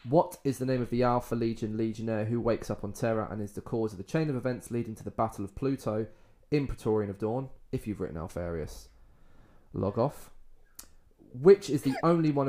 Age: 20-39